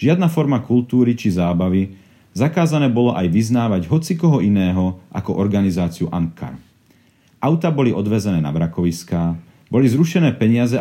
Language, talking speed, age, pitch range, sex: Slovak, 130 wpm, 40-59, 90-130 Hz, male